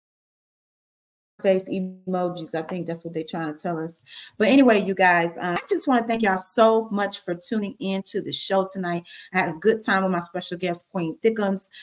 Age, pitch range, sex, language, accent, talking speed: 30-49, 180-215 Hz, female, English, American, 215 wpm